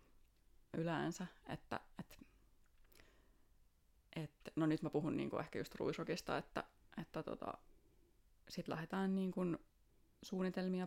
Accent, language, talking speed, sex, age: native, Finnish, 105 wpm, female, 20-39